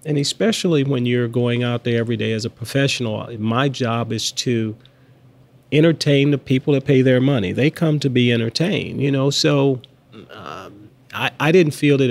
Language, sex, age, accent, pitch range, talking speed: English, male, 40-59, American, 115-135 Hz, 185 wpm